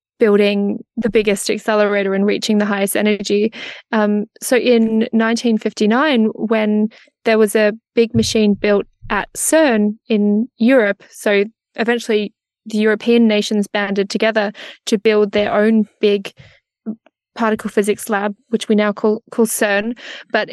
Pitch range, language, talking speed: 210-235 Hz, English, 135 wpm